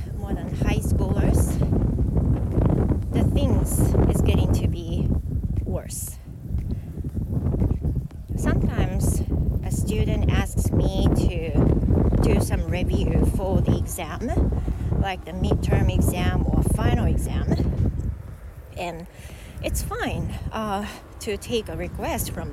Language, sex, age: Japanese, female, 30-49